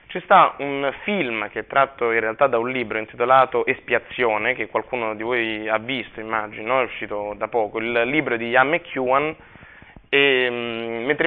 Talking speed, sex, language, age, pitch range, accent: 180 wpm, male, Italian, 20-39, 110-135 Hz, native